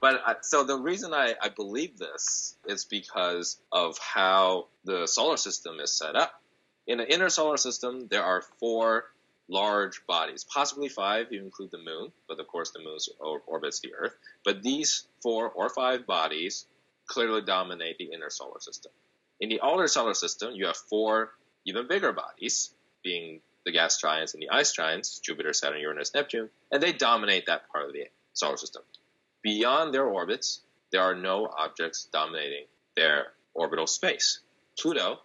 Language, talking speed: English, 170 wpm